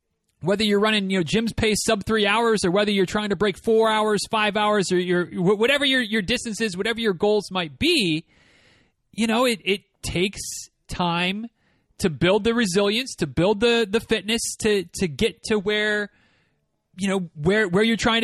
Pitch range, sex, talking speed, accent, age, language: 170-220 Hz, male, 190 wpm, American, 30-49, English